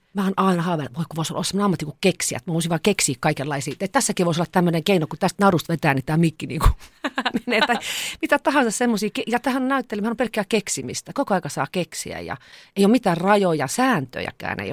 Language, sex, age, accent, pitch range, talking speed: Finnish, female, 40-59, native, 140-195 Hz, 210 wpm